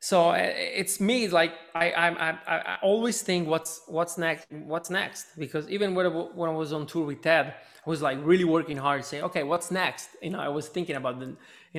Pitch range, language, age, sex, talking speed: 125-160 Hz, English, 20-39, male, 220 wpm